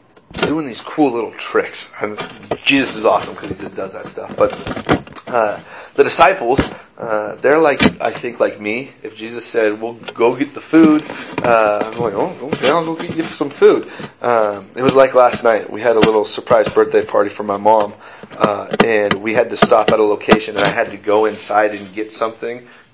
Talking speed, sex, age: 210 wpm, male, 30-49